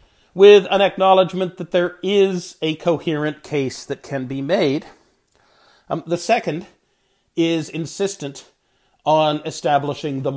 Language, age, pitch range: English, 40-59, 135-185 Hz